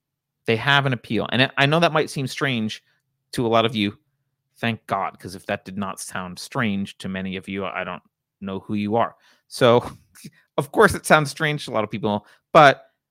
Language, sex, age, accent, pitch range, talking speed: English, male, 30-49, American, 105-135 Hz, 215 wpm